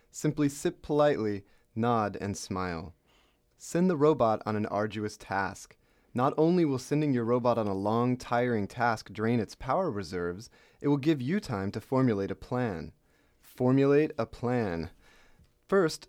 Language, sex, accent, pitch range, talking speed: English, male, American, 105-140 Hz, 155 wpm